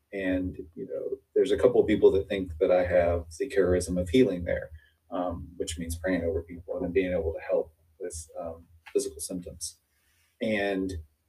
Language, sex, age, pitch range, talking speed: English, male, 30-49, 85-100 Hz, 180 wpm